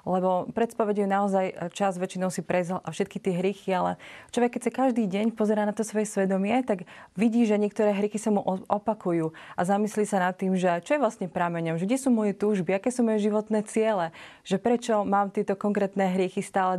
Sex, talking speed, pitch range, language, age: female, 205 wpm, 185-215 Hz, Slovak, 30-49